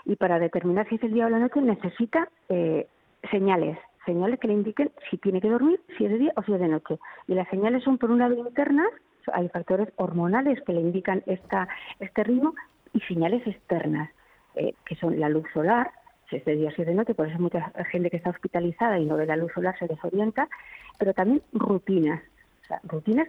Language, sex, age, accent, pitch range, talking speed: Spanish, female, 40-59, Spanish, 170-230 Hz, 215 wpm